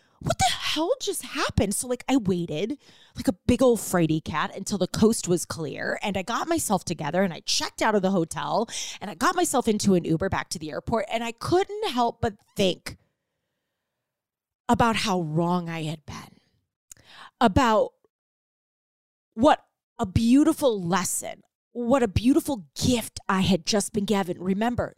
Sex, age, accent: female, 30-49, American